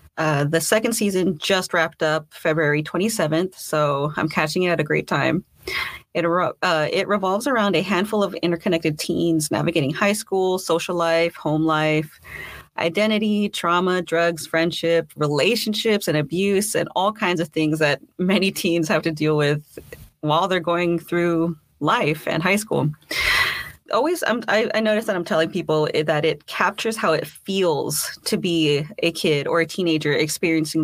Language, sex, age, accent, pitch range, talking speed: English, female, 30-49, American, 155-190 Hz, 165 wpm